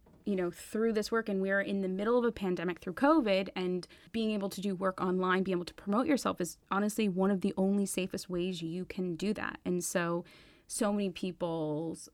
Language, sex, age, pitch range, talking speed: English, female, 20-39, 170-205 Hz, 220 wpm